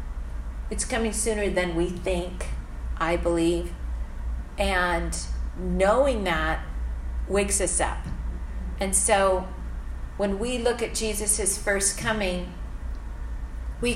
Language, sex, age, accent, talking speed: English, female, 40-59, American, 105 wpm